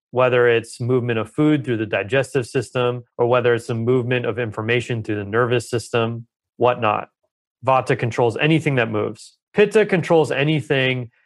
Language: English